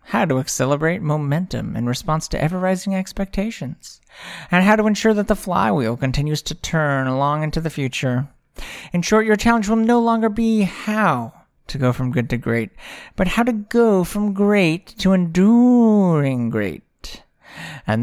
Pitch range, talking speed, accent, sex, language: 125-185 Hz, 160 wpm, American, male, English